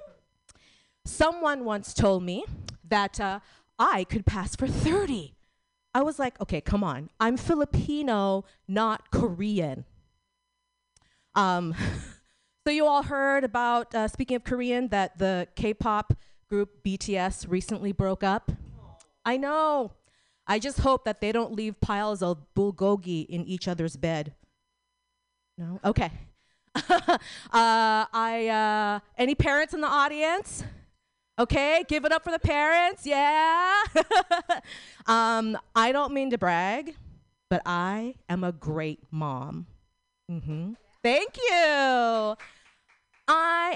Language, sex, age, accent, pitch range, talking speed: English, female, 30-49, American, 195-300 Hz, 125 wpm